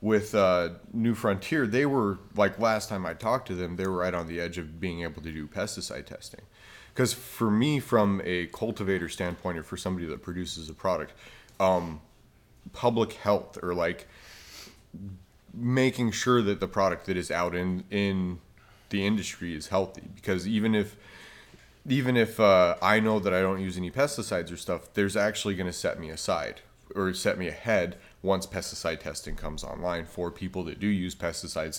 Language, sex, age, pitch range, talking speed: English, male, 30-49, 85-105 Hz, 180 wpm